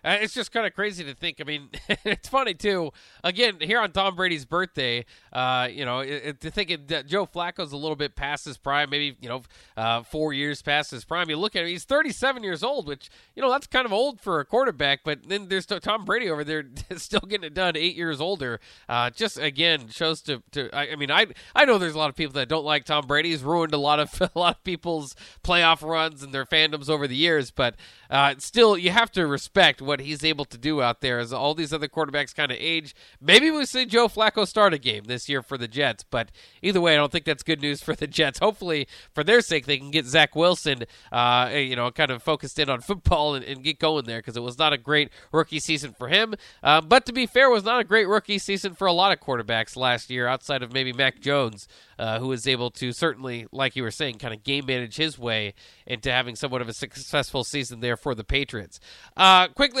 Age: 20-39